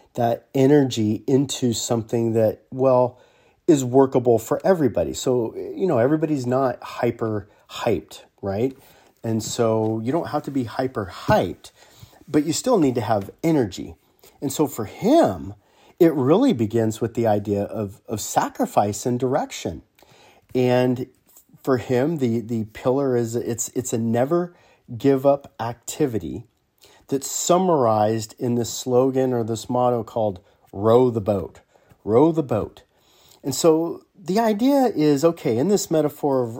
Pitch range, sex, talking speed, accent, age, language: 115-150 Hz, male, 140 wpm, American, 40-59, English